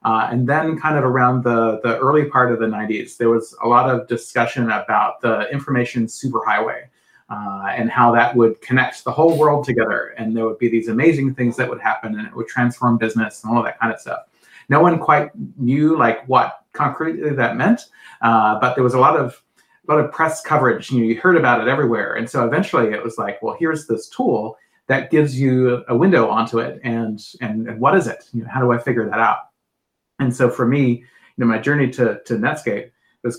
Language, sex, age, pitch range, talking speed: English, male, 30-49, 115-140 Hz, 225 wpm